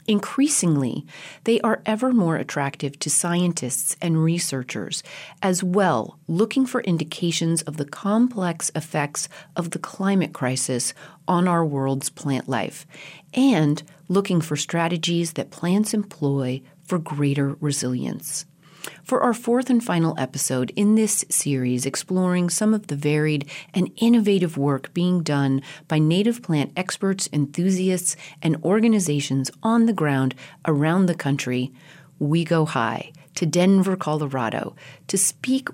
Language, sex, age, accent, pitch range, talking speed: English, female, 40-59, American, 145-190 Hz, 130 wpm